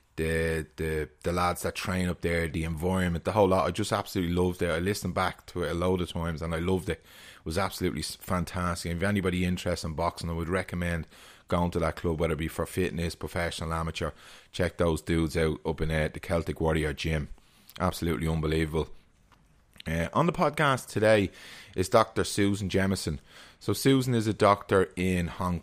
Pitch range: 80-95 Hz